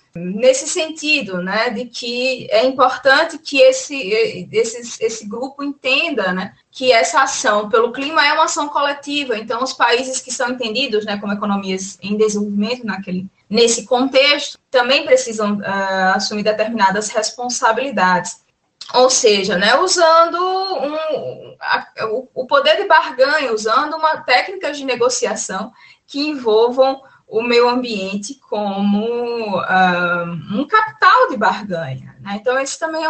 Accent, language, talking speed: Brazilian, Portuguese, 135 wpm